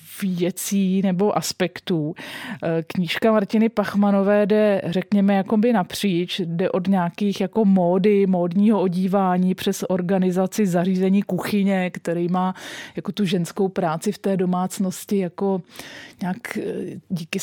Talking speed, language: 115 wpm, Czech